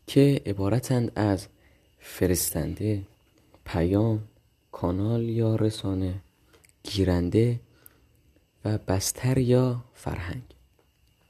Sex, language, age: male, Persian, 20-39